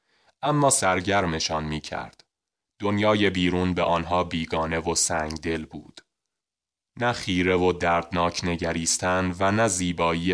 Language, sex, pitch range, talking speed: English, male, 85-100 Hz, 115 wpm